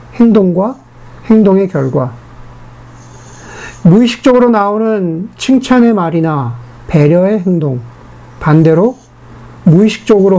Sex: male